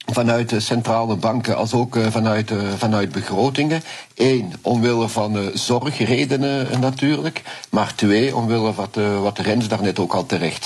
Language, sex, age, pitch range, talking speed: Dutch, male, 50-69, 100-115 Hz, 135 wpm